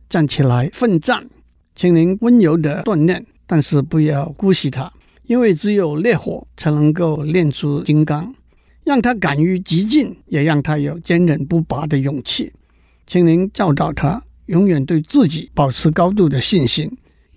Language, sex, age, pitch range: Chinese, male, 60-79, 145-190 Hz